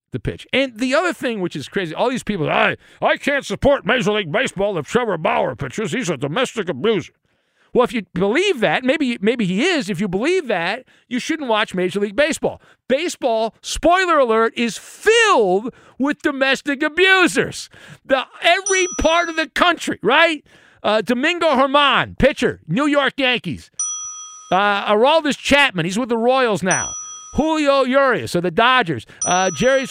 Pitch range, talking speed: 200-285 Hz, 165 wpm